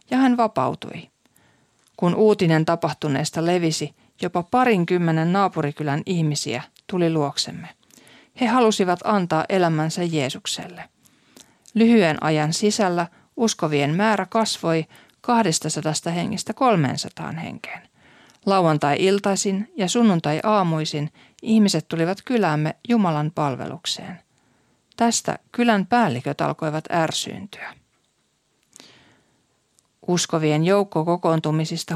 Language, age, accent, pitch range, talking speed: Finnish, 40-59, native, 155-210 Hz, 80 wpm